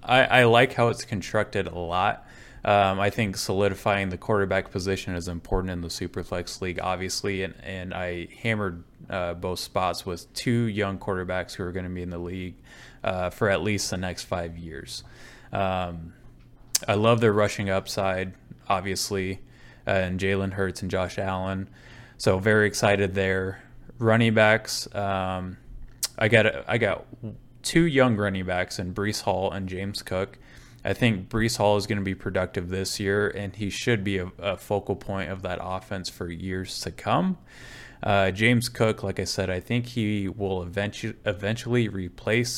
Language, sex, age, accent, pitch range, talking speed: English, male, 20-39, American, 95-110 Hz, 175 wpm